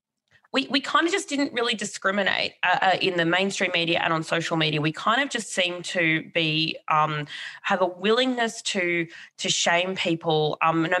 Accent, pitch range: Australian, 165-210 Hz